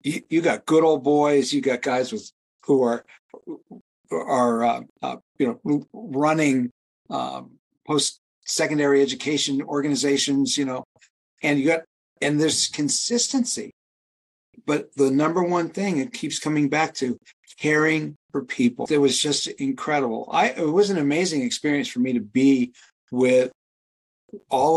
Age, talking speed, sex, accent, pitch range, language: 50-69, 145 wpm, male, American, 130-165 Hz, English